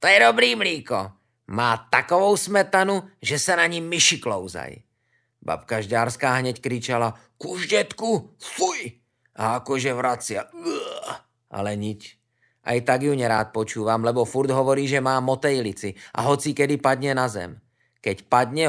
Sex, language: male, English